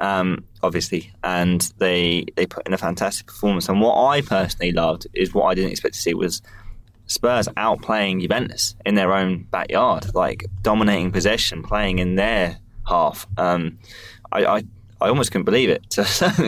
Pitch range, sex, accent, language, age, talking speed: 90-105 Hz, male, British, English, 20-39, 175 wpm